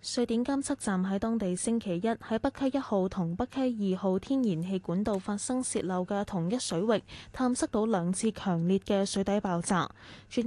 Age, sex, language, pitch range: 10-29, female, Chinese, 175-225 Hz